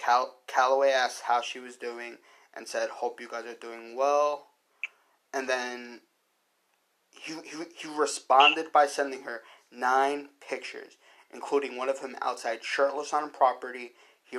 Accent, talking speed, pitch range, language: American, 150 wpm, 125-140 Hz, English